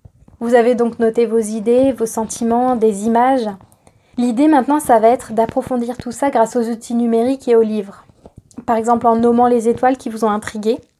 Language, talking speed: French, 190 wpm